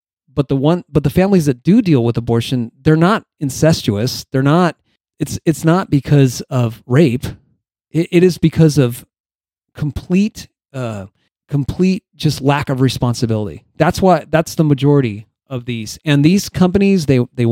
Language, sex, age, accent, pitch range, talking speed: English, male, 30-49, American, 125-170 Hz, 160 wpm